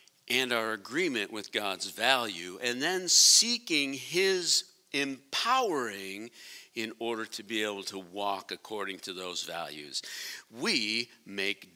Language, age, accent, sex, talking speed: English, 50-69, American, male, 120 wpm